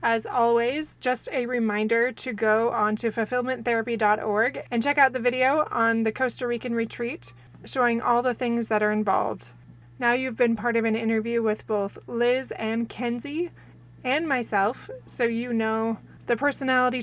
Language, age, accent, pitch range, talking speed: English, 20-39, American, 205-240 Hz, 160 wpm